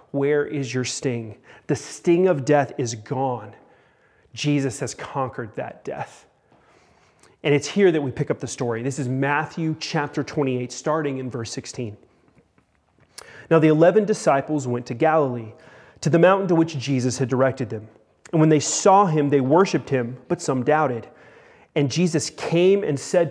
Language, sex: English, male